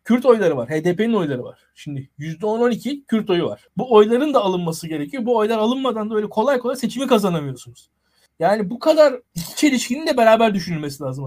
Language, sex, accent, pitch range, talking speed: Turkish, male, native, 170-220 Hz, 180 wpm